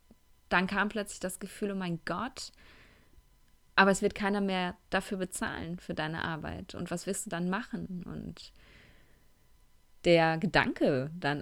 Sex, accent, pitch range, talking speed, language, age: female, German, 160-185 Hz, 145 wpm, German, 20-39